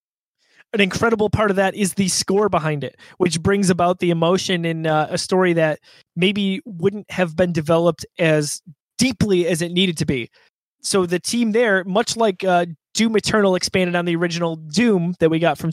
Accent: American